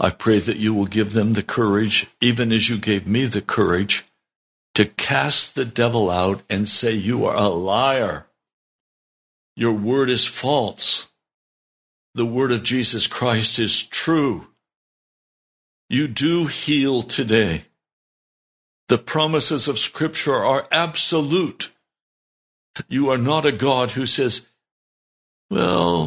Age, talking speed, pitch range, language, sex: 60-79, 130 wpm, 105-145 Hz, English, male